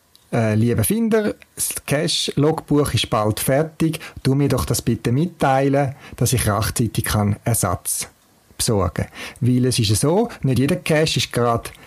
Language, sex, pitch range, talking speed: German, male, 110-140 Hz, 150 wpm